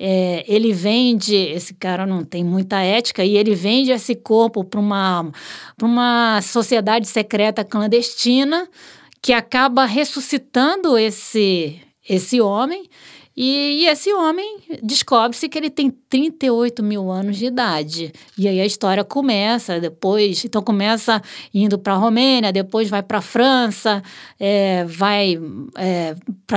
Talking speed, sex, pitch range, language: 130 wpm, female, 205-280 Hz, English